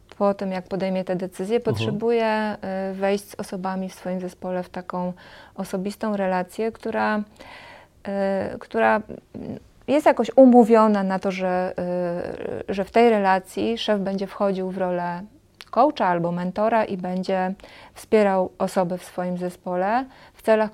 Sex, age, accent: female, 20-39, native